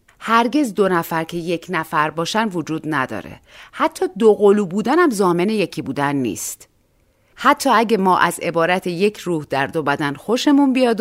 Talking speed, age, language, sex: 160 wpm, 40-59, Persian, female